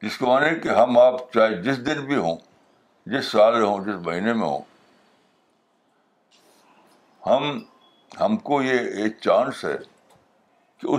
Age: 60-79